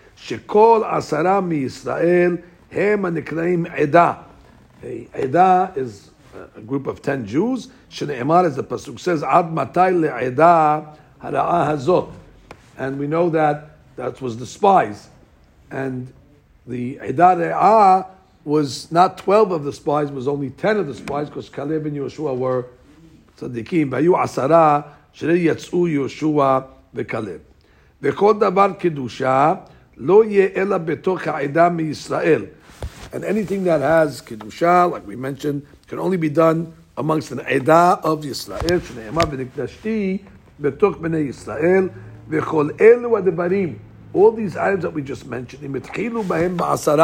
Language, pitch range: English, 140-185 Hz